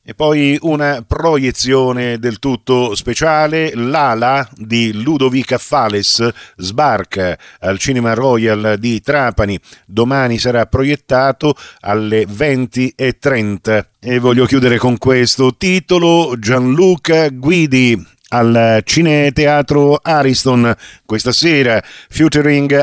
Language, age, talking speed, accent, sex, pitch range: Italian, 50-69, 95 wpm, native, male, 105-135 Hz